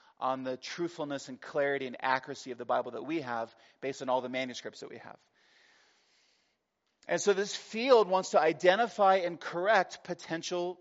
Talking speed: 170 wpm